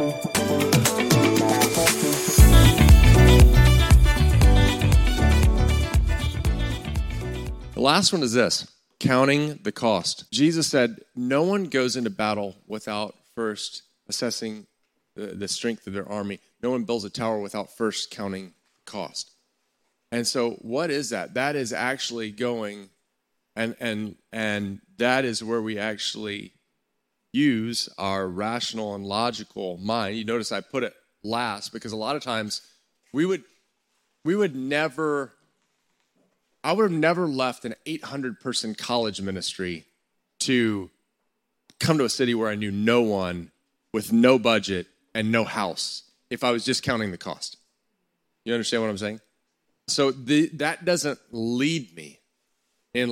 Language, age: English, 30-49